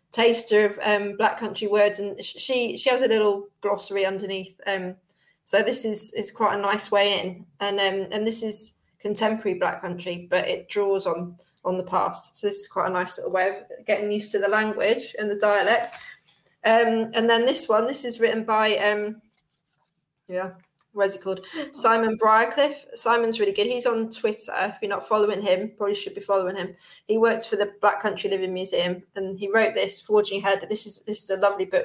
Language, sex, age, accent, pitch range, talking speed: English, female, 20-39, British, 195-225 Hz, 205 wpm